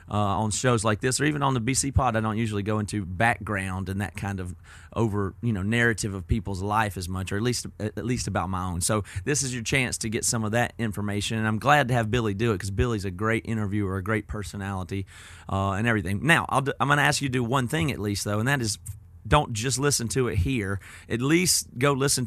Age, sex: 30-49, male